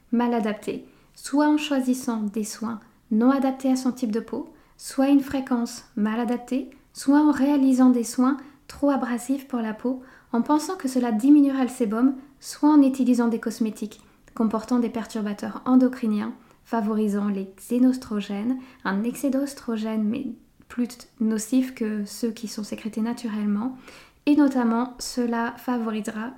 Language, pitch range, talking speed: French, 230-265 Hz, 145 wpm